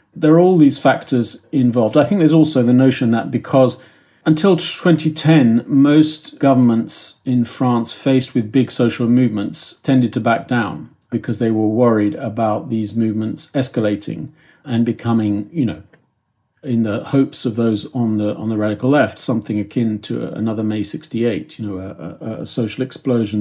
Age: 40-59